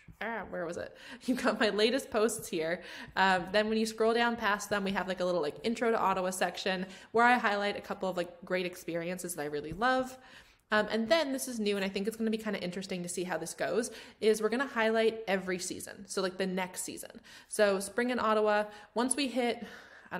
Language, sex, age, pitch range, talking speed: English, female, 20-39, 185-225 Hz, 245 wpm